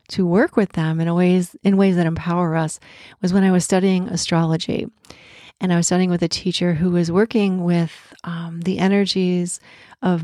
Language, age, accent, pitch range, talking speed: English, 40-59, American, 170-200 Hz, 190 wpm